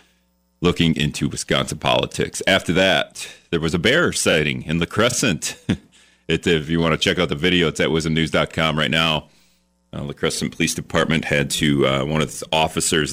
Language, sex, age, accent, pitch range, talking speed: English, male, 40-59, American, 70-85 Hz, 180 wpm